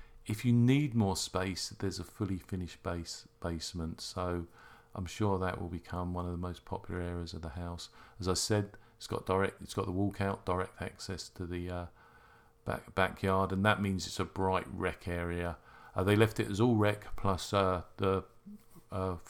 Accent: British